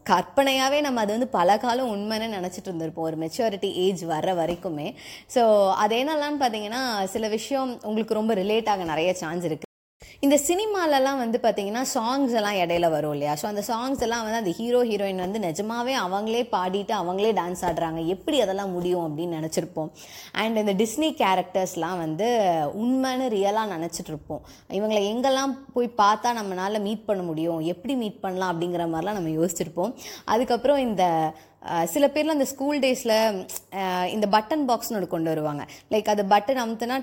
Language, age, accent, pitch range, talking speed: Tamil, 20-39, native, 175-225 Hz, 155 wpm